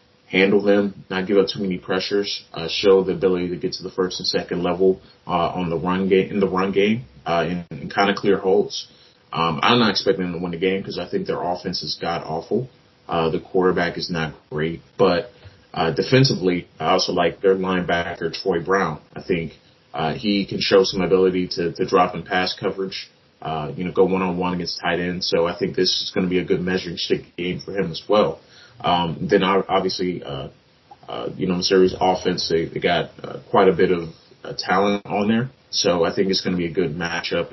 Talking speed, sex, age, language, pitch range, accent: 225 wpm, male, 30-49, English, 85-95 Hz, American